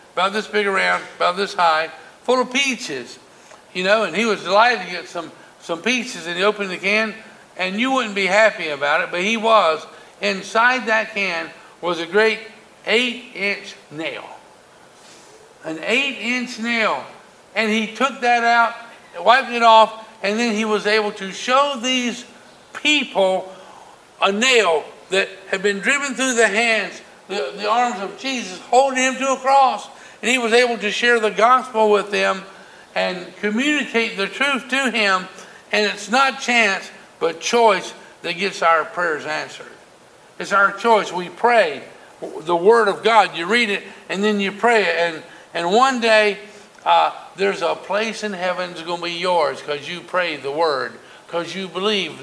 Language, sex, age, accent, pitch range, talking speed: English, male, 60-79, American, 185-235 Hz, 175 wpm